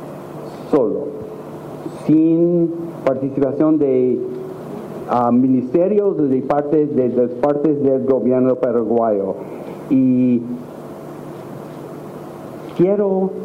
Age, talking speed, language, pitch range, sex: 60-79, 70 wpm, Spanish, 130-165 Hz, male